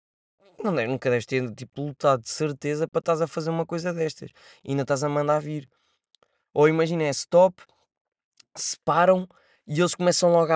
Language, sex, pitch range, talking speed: Portuguese, male, 150-230 Hz, 165 wpm